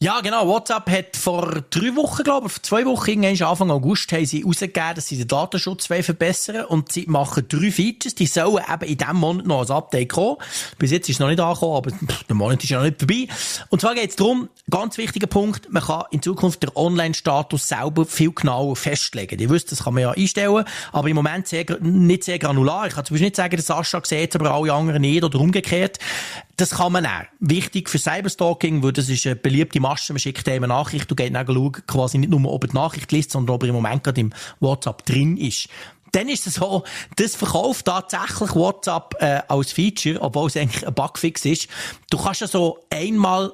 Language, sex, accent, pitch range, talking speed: German, male, Austrian, 140-185 Hz, 225 wpm